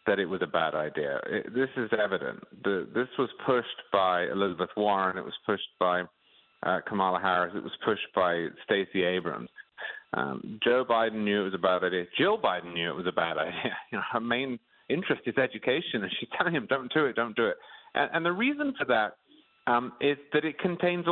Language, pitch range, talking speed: English, 120-200 Hz, 200 wpm